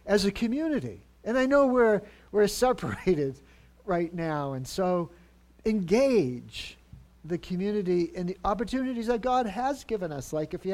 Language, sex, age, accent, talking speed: English, male, 50-69, American, 150 wpm